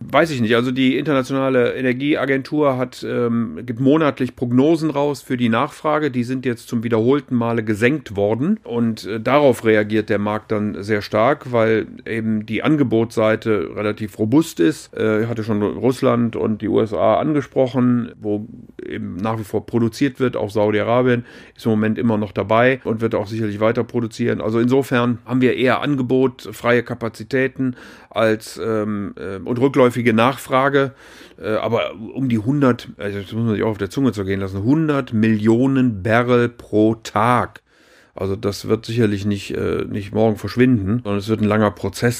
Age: 40-59